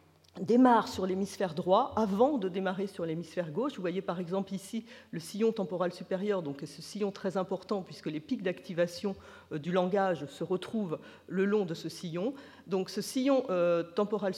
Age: 50-69